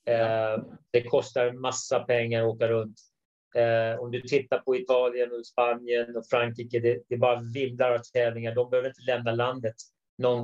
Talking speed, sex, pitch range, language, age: 155 wpm, male, 120-140 Hz, Swedish, 30-49